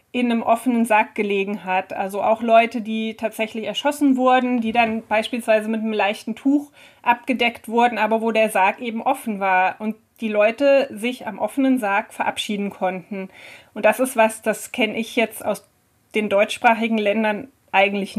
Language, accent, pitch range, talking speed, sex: German, German, 215-245 Hz, 170 wpm, female